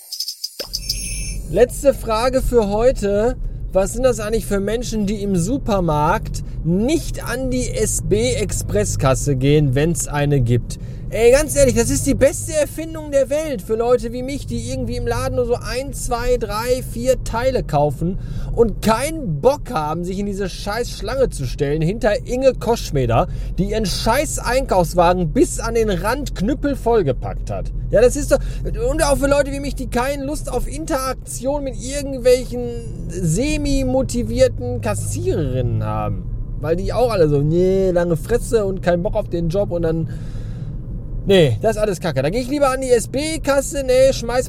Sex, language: male, German